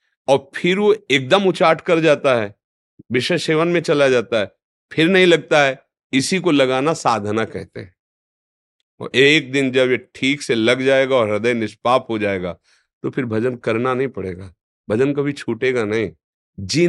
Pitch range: 110-150 Hz